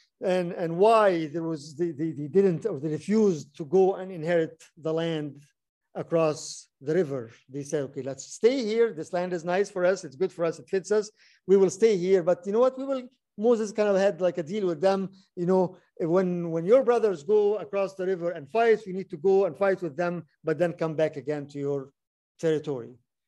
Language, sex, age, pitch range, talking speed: English, male, 50-69, 160-195 Hz, 220 wpm